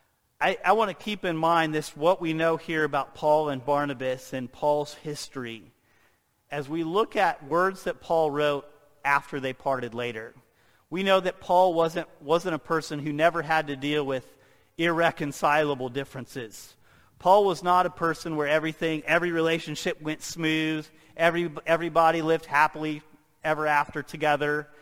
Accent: American